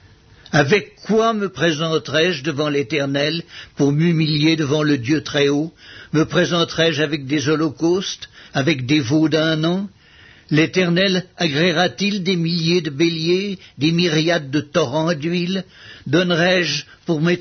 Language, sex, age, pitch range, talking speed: French, male, 60-79, 145-180 Hz, 140 wpm